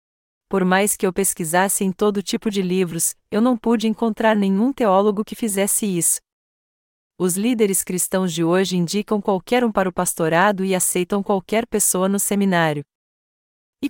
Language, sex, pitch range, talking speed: Portuguese, female, 170-215 Hz, 160 wpm